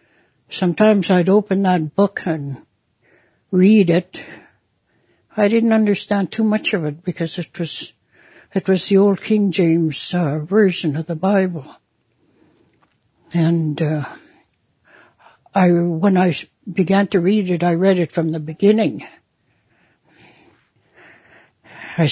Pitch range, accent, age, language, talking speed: 165-190 Hz, American, 60-79, English, 120 wpm